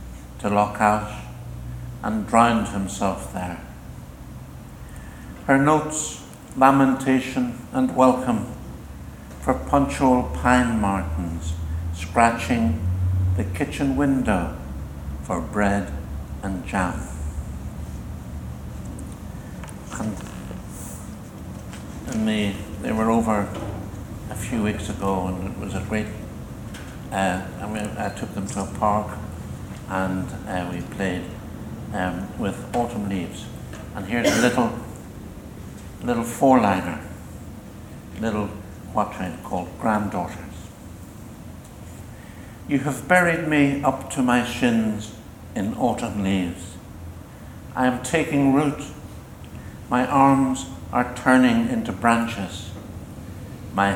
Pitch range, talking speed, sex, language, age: 90-115 Hz, 100 wpm, male, English, 60-79